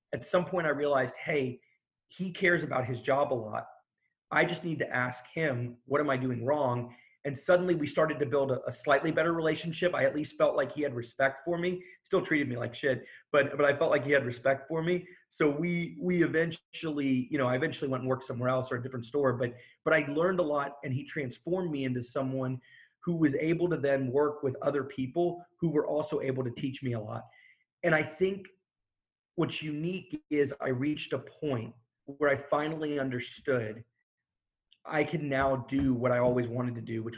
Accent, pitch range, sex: American, 125-160 Hz, male